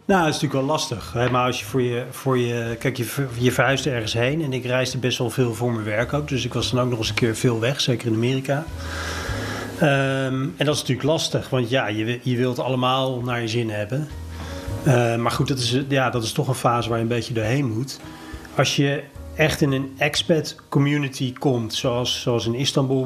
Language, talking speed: Dutch, 215 wpm